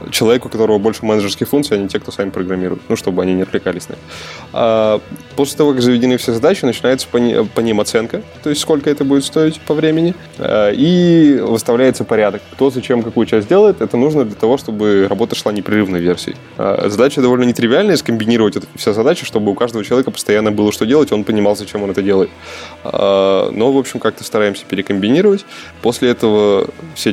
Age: 20-39